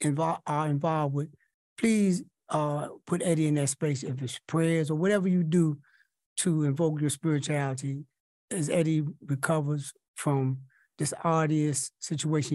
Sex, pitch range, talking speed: male, 130-155 Hz, 135 wpm